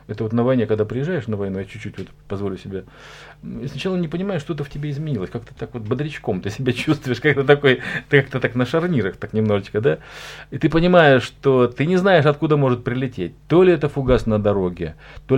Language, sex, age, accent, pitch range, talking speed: Russian, male, 40-59, native, 105-140 Hz, 210 wpm